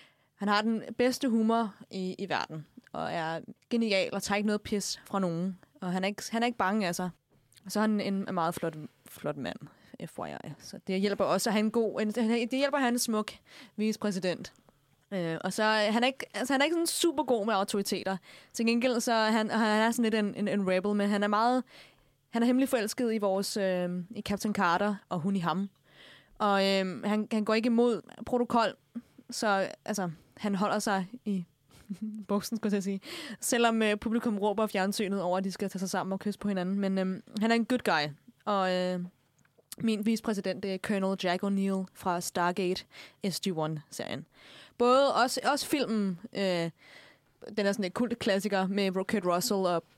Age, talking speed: 20-39, 200 wpm